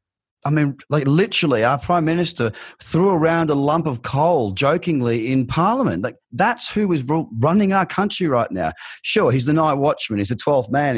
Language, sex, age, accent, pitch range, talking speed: English, male, 30-49, Australian, 105-145 Hz, 185 wpm